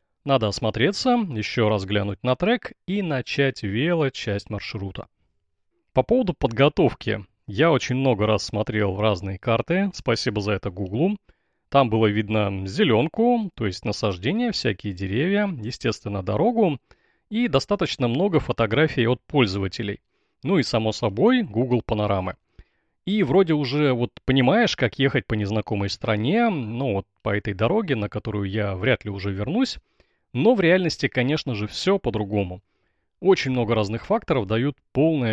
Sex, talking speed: male, 145 wpm